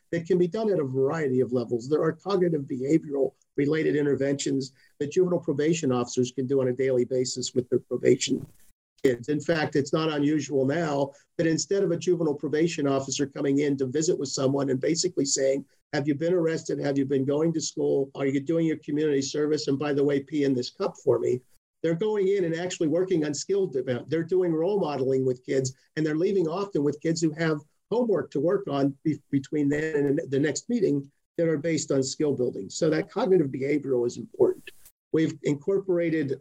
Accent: American